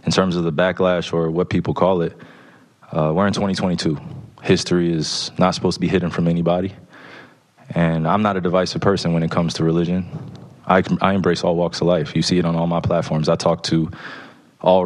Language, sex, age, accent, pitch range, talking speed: English, male, 20-39, American, 85-90 Hz, 210 wpm